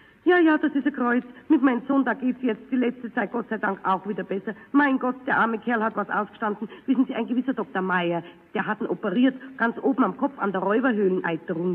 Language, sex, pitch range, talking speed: German, female, 195-270 Hz, 240 wpm